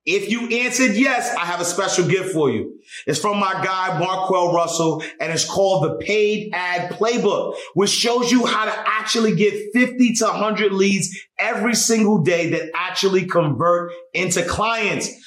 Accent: American